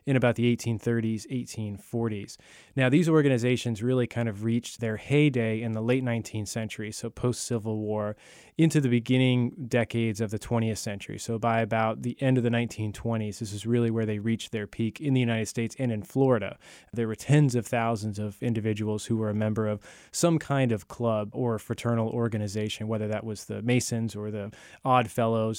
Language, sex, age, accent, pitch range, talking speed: English, male, 20-39, American, 110-120 Hz, 190 wpm